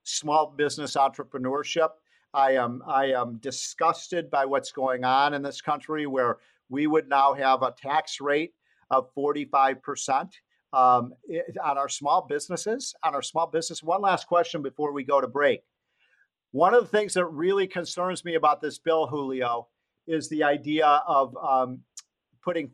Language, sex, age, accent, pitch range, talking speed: English, male, 50-69, American, 140-170 Hz, 160 wpm